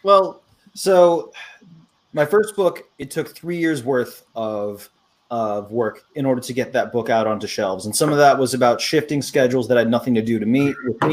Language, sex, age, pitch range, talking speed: English, male, 30-49, 115-145 Hz, 205 wpm